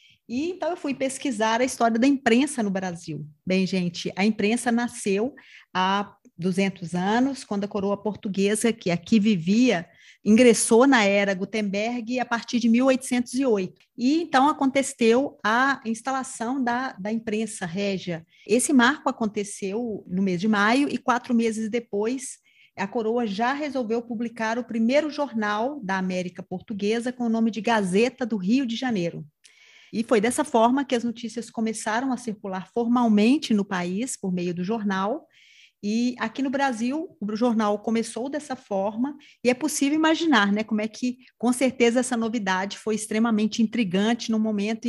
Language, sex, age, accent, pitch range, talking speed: Portuguese, female, 40-59, Brazilian, 195-245 Hz, 155 wpm